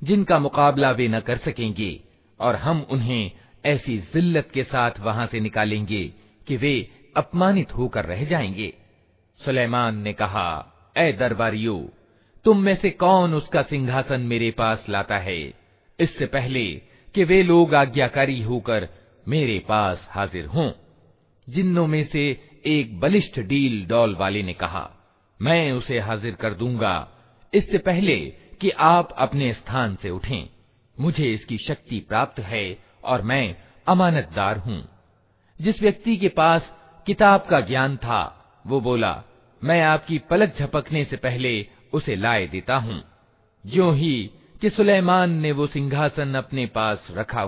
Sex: male